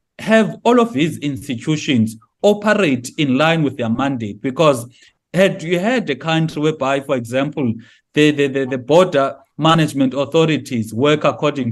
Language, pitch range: English, 130-160 Hz